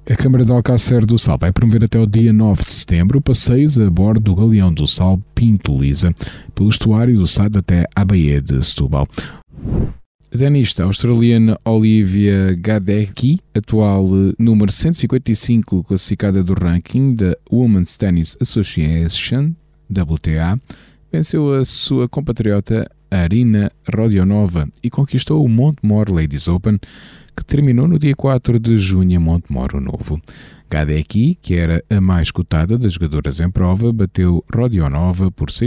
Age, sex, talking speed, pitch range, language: 20-39, male, 140 wpm, 85-115 Hz, Portuguese